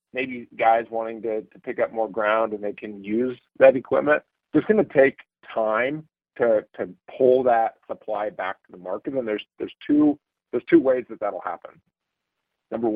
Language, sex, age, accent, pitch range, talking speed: English, male, 50-69, American, 105-130 Hz, 180 wpm